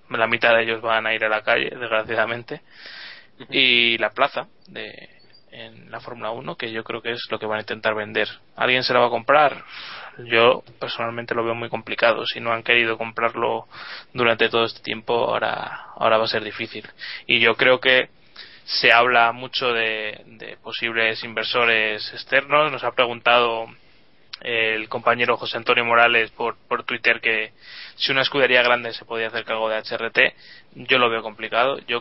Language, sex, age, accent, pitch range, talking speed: Spanish, male, 20-39, Spanish, 110-120 Hz, 180 wpm